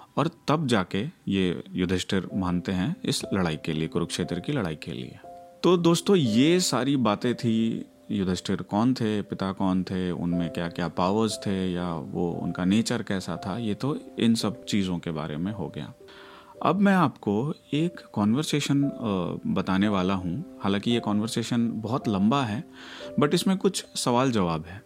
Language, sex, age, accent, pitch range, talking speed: Hindi, male, 30-49, native, 95-135 Hz, 165 wpm